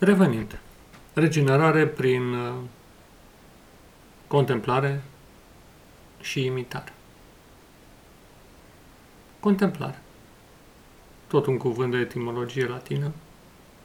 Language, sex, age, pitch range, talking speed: Romanian, male, 40-59, 125-155 Hz, 55 wpm